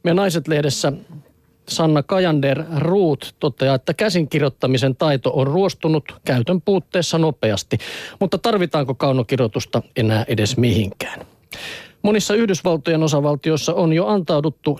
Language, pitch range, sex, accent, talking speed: Finnish, 130-165 Hz, male, native, 100 wpm